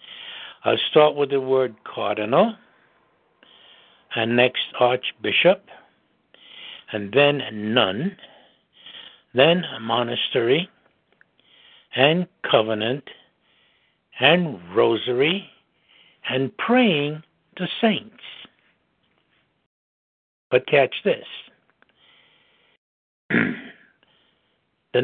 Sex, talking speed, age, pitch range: male, 60 wpm, 60-79, 125-180 Hz